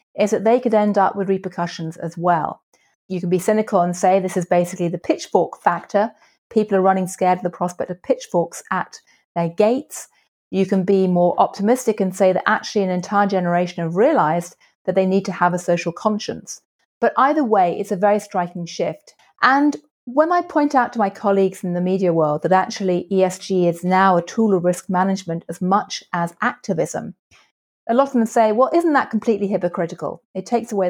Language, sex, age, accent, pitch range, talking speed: English, female, 30-49, British, 180-220 Hz, 200 wpm